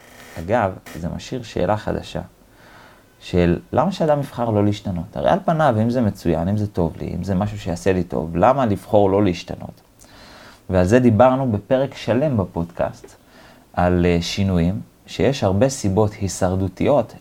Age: 30-49